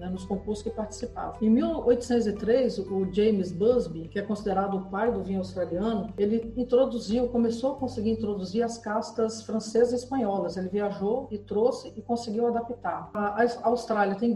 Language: Portuguese